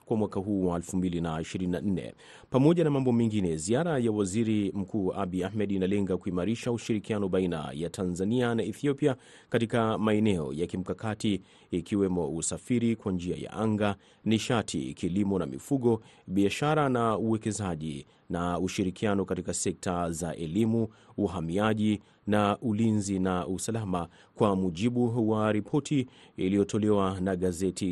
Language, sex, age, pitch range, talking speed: Swahili, male, 30-49, 90-115 Hz, 125 wpm